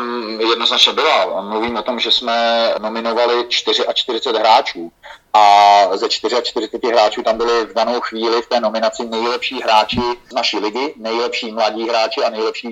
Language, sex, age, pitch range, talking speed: Slovak, male, 40-59, 115-125 Hz, 175 wpm